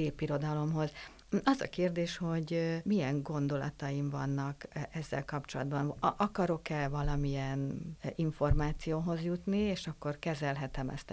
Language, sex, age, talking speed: Hungarian, female, 50-69, 90 wpm